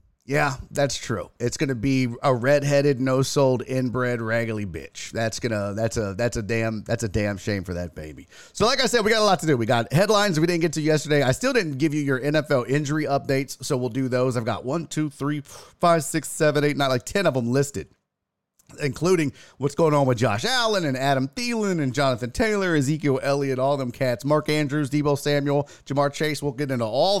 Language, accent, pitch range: English, American, 125-185 Hz